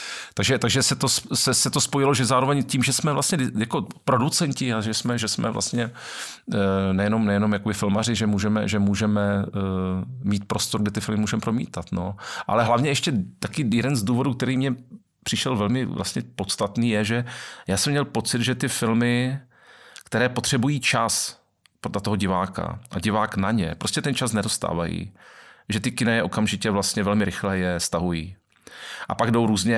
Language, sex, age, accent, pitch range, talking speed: Czech, male, 40-59, native, 100-120 Hz, 175 wpm